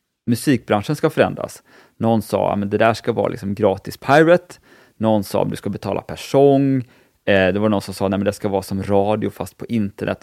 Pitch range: 100-125 Hz